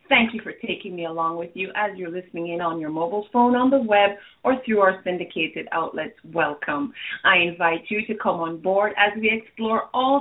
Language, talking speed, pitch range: English, 210 wpm, 180-250 Hz